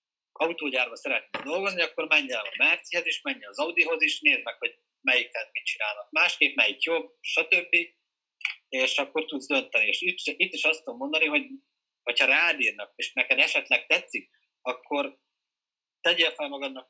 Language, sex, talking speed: Hungarian, male, 165 wpm